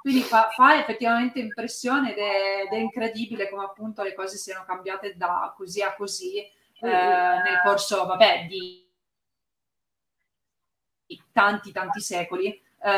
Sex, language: female, Italian